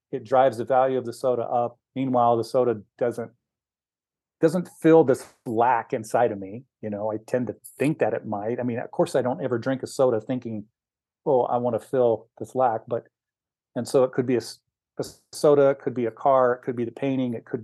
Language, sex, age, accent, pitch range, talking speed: English, male, 40-59, American, 120-140 Hz, 230 wpm